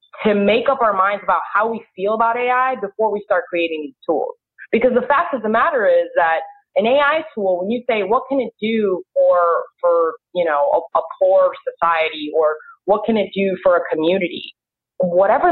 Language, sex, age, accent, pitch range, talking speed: English, female, 20-39, American, 190-275 Hz, 200 wpm